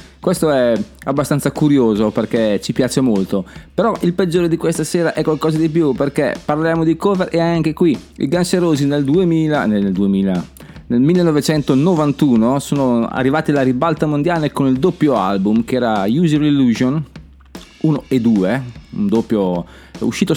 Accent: native